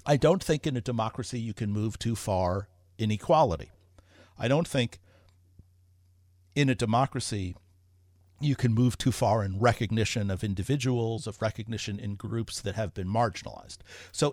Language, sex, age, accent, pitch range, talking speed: English, male, 50-69, American, 95-130 Hz, 155 wpm